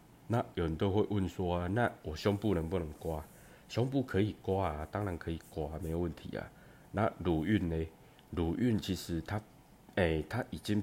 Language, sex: Chinese, male